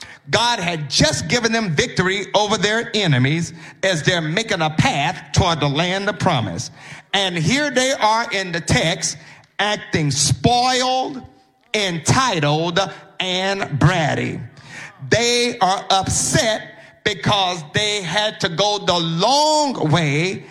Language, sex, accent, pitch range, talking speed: English, male, American, 155-235 Hz, 125 wpm